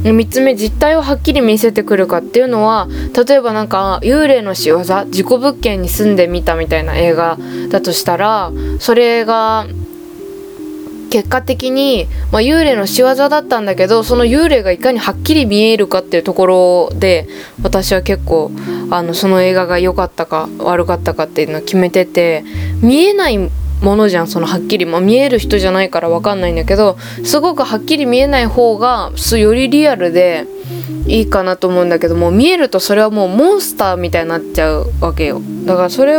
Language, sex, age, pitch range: Japanese, female, 20-39, 180-255 Hz